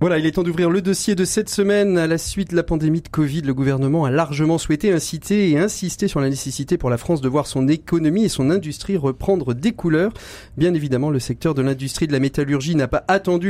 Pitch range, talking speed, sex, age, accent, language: 135-170 Hz, 240 wpm, male, 40-59, French, French